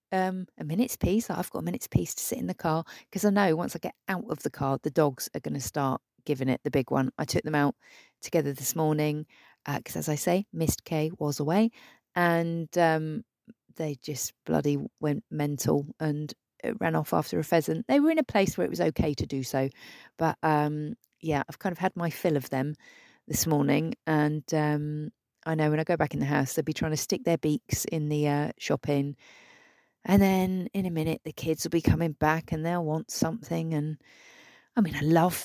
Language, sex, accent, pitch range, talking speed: English, female, British, 150-220 Hz, 225 wpm